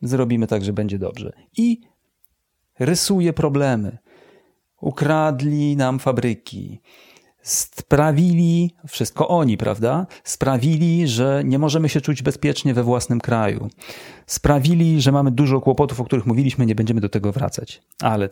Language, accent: Polish, native